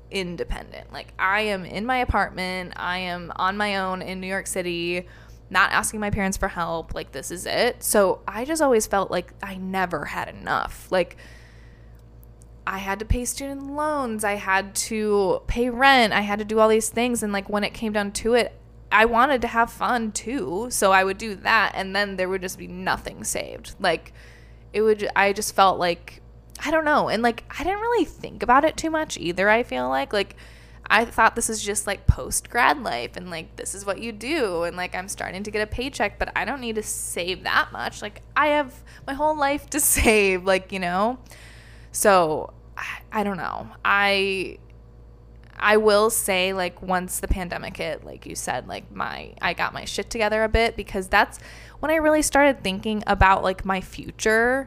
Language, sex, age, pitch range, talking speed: English, female, 20-39, 190-230 Hz, 205 wpm